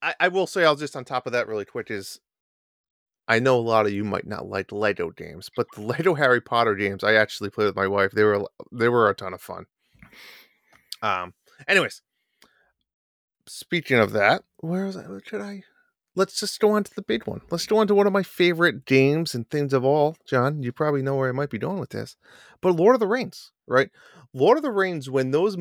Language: English